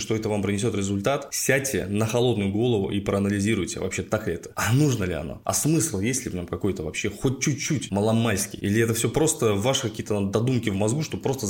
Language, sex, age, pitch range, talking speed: Russian, male, 20-39, 100-120 Hz, 215 wpm